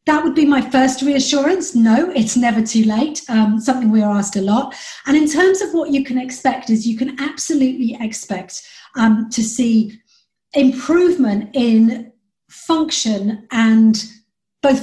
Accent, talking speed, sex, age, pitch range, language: British, 160 wpm, female, 40-59, 220-275 Hz, English